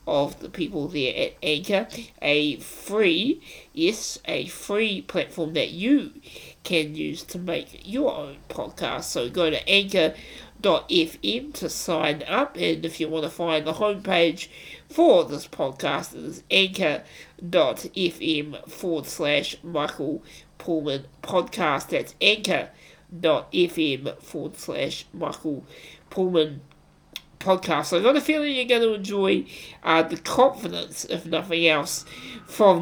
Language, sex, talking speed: English, male, 130 wpm